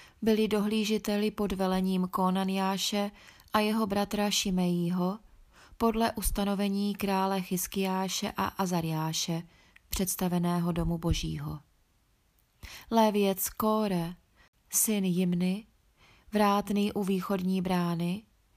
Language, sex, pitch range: Czech, female, 180-205 Hz